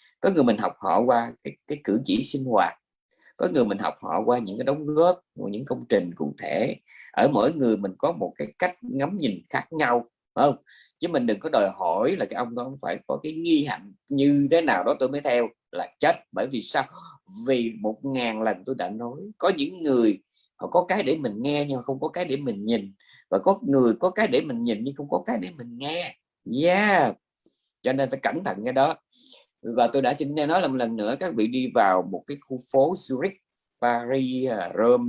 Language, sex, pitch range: Vietnamese, male, 120-175 Hz